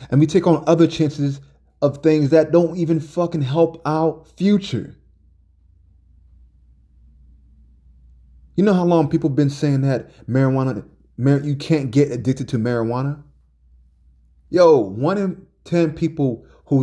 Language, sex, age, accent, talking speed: English, male, 20-39, American, 130 wpm